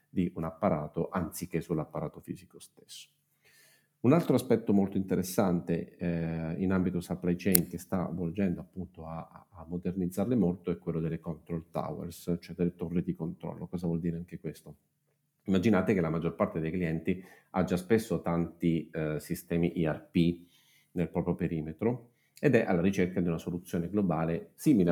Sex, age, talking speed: male, 40-59, 160 wpm